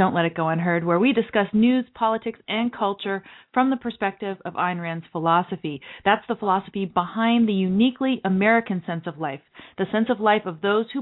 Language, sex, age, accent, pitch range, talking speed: English, female, 40-59, American, 170-215 Hz, 195 wpm